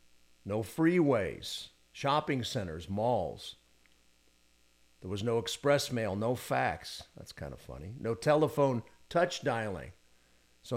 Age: 50-69